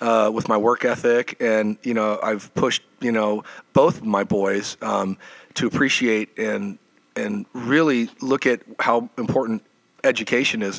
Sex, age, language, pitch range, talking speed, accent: male, 40-59, English, 110-130 Hz, 150 wpm, American